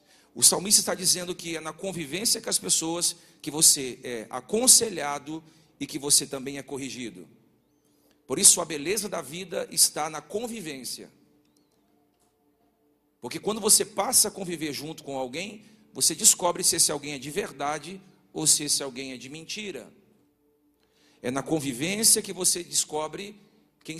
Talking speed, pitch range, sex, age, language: 155 wpm, 145-185 Hz, male, 50-69, Portuguese